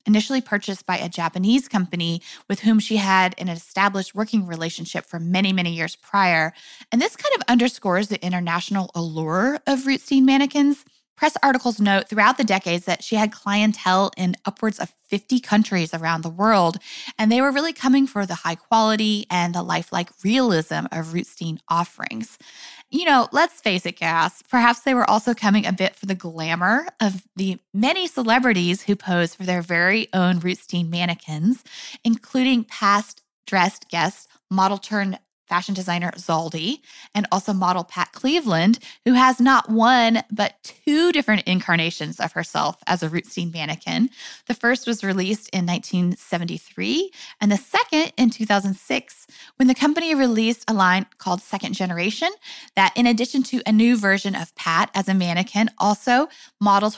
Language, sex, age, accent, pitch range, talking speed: English, female, 20-39, American, 180-245 Hz, 160 wpm